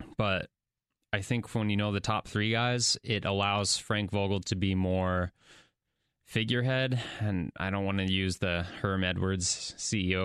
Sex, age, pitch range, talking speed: male, 20-39, 95-110 Hz, 165 wpm